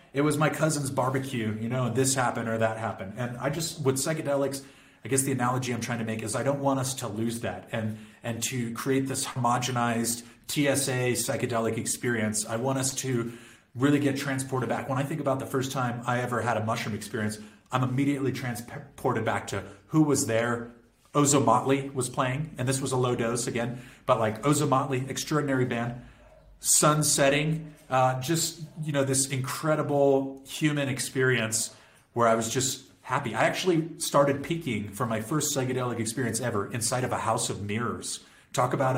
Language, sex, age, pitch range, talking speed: English, male, 30-49, 120-140 Hz, 185 wpm